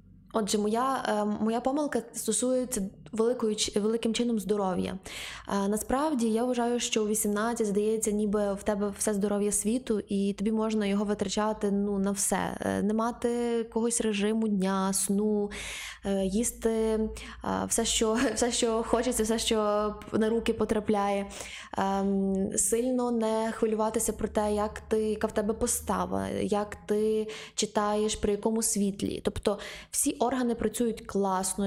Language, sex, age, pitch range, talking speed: Ukrainian, female, 20-39, 205-230 Hz, 145 wpm